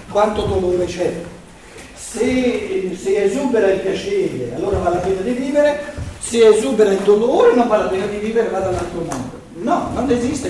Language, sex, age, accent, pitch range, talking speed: Italian, male, 60-79, native, 175-240 Hz, 170 wpm